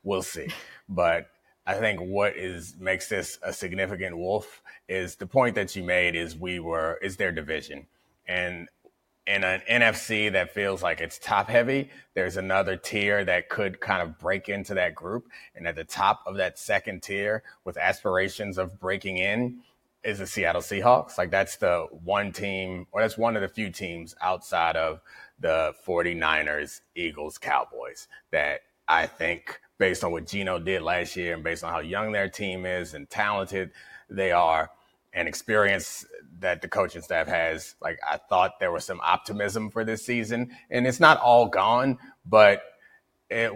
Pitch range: 90-110 Hz